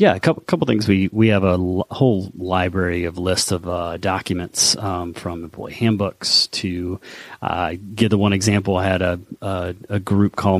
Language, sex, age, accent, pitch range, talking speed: English, male, 30-49, American, 90-105 Hz, 190 wpm